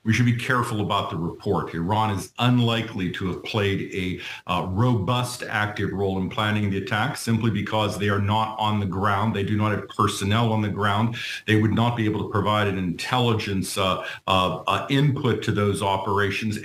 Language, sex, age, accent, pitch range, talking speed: English, male, 50-69, American, 105-120 Hz, 195 wpm